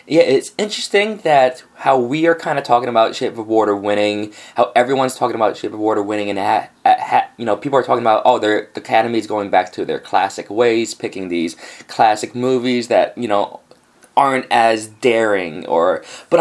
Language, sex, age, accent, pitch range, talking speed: English, male, 20-39, American, 110-140 Hz, 195 wpm